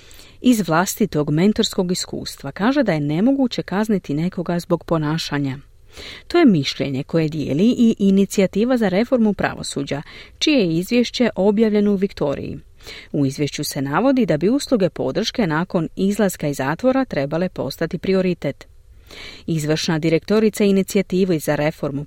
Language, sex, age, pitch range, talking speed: Croatian, female, 40-59, 145-205 Hz, 130 wpm